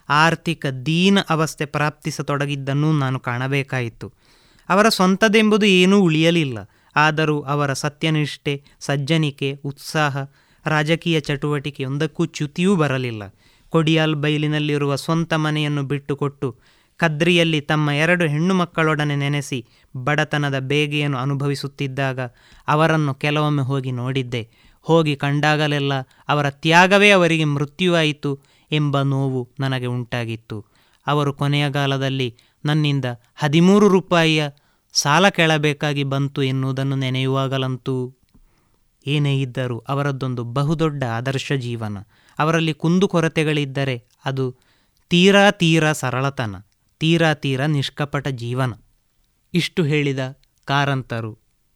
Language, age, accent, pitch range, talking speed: Kannada, 20-39, native, 130-155 Hz, 90 wpm